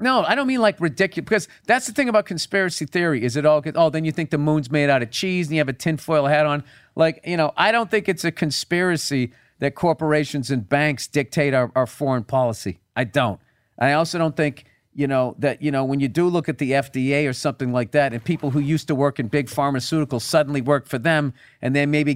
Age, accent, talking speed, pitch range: 40-59, American, 240 wpm, 130-160 Hz